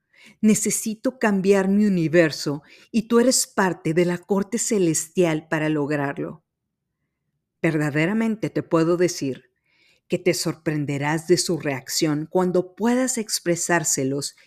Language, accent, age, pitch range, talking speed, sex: Spanish, Mexican, 40-59, 150-195 Hz, 110 wpm, female